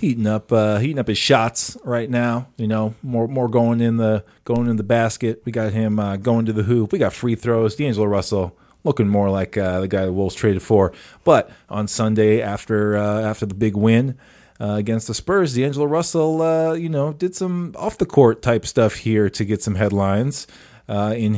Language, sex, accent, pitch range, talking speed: English, male, American, 110-130 Hz, 215 wpm